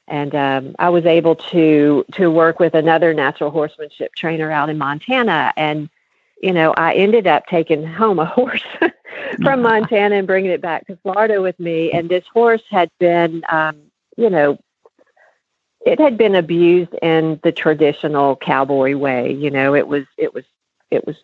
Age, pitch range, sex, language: 50-69, 150-185 Hz, female, English